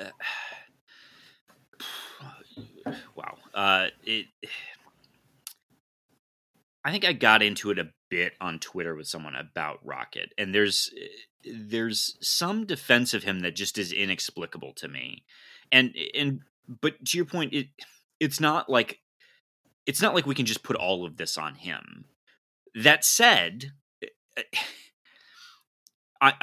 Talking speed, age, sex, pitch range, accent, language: 125 wpm, 30-49, male, 105-165 Hz, American, English